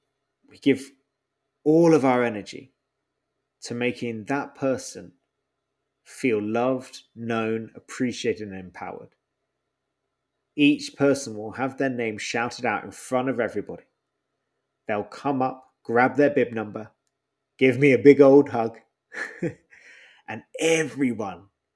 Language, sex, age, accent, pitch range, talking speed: English, male, 20-39, British, 115-150 Hz, 115 wpm